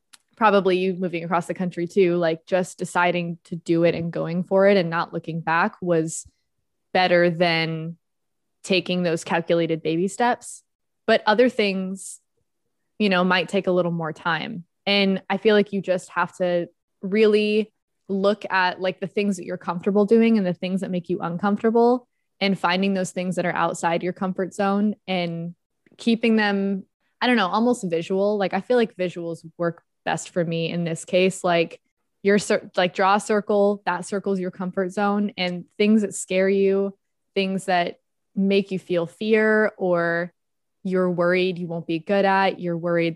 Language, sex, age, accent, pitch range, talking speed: English, female, 20-39, American, 175-200 Hz, 175 wpm